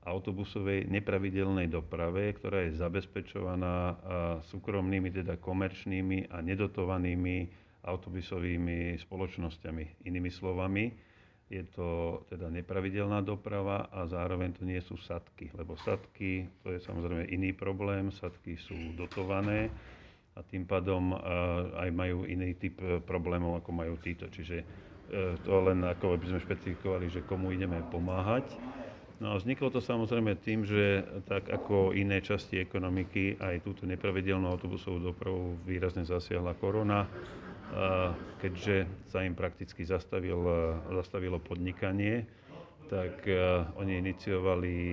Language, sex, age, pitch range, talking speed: Slovak, male, 40-59, 90-100 Hz, 115 wpm